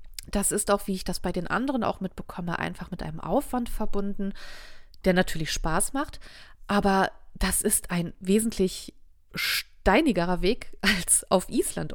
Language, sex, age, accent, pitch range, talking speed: German, female, 30-49, German, 170-205 Hz, 150 wpm